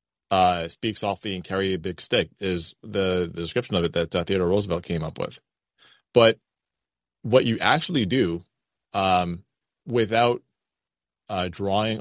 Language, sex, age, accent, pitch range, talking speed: English, male, 20-39, American, 90-110 Hz, 150 wpm